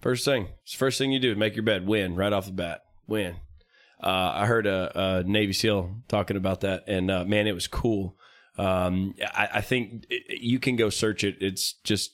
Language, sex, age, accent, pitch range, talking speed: English, male, 20-39, American, 100-115 Hz, 215 wpm